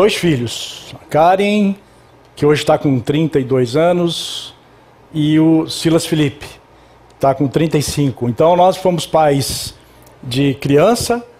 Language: Portuguese